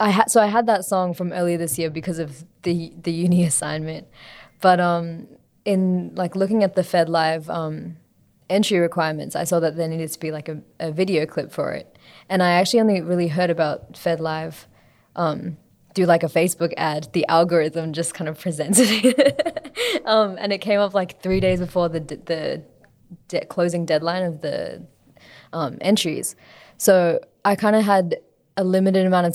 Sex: female